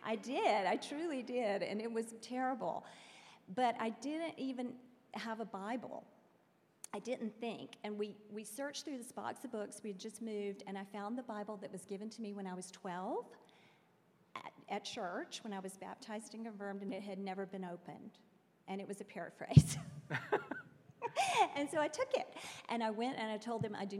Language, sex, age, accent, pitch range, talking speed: English, female, 40-59, American, 195-245 Hz, 200 wpm